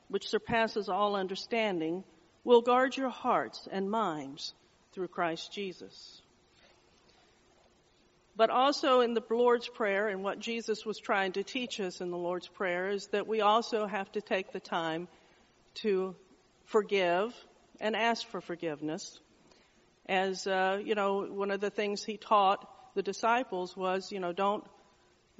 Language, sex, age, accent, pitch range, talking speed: English, female, 50-69, American, 185-225 Hz, 150 wpm